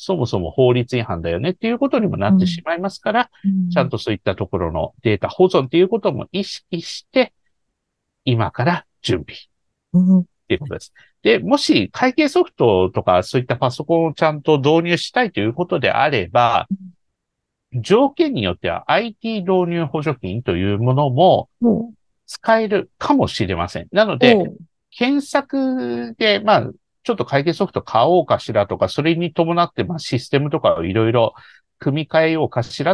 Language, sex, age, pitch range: Japanese, male, 50-69, 125-195 Hz